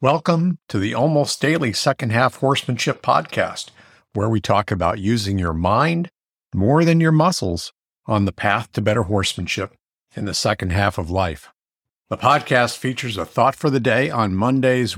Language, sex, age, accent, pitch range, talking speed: English, male, 50-69, American, 95-135 Hz, 170 wpm